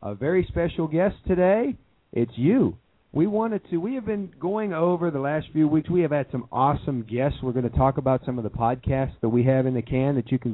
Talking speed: 245 wpm